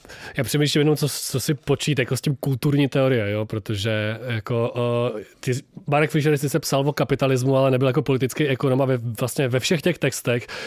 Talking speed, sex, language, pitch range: 190 wpm, male, Czech, 115-135 Hz